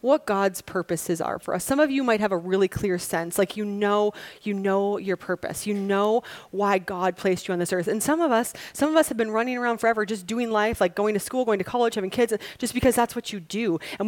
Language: English